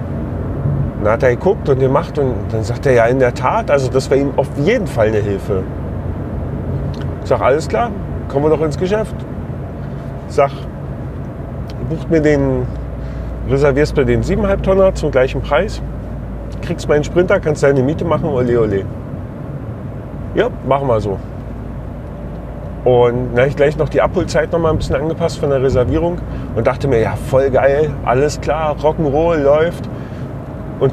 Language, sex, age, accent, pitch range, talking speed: German, male, 30-49, German, 115-145 Hz, 160 wpm